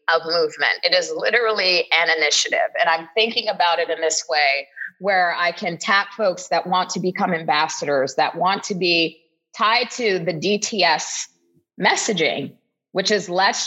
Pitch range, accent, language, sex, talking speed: 170-235 Hz, American, English, female, 165 wpm